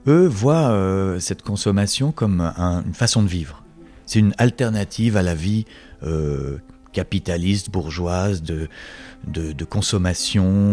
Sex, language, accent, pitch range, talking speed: male, French, French, 80-100 Hz, 135 wpm